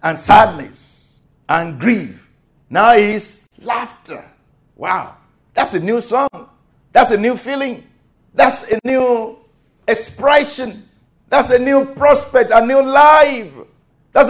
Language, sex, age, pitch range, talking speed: English, male, 50-69, 170-245 Hz, 120 wpm